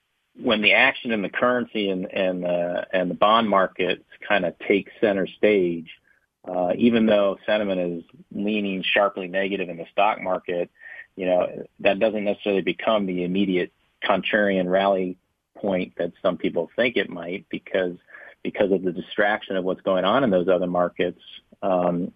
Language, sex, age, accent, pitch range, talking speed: English, male, 40-59, American, 90-110 Hz, 165 wpm